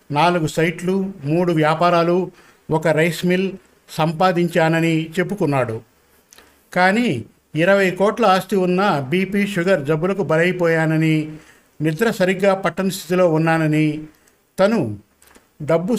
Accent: native